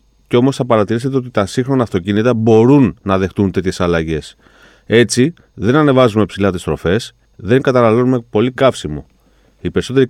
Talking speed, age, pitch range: 150 wpm, 30-49, 95-135 Hz